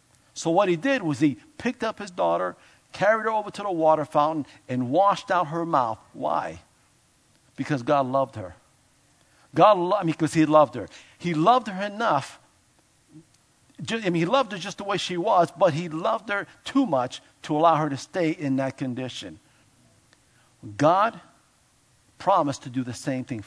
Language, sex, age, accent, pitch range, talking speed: English, male, 50-69, American, 130-195 Hz, 175 wpm